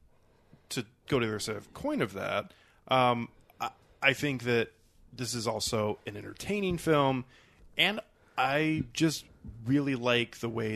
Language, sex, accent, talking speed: English, male, American, 155 wpm